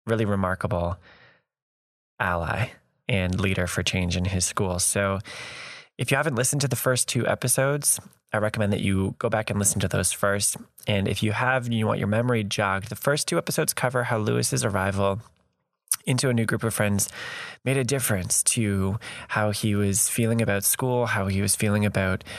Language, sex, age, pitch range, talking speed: English, male, 20-39, 95-120 Hz, 190 wpm